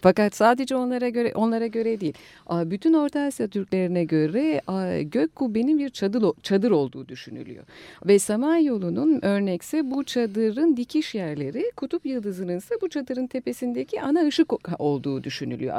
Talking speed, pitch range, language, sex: 135 wpm, 170-285 Hz, Turkish, female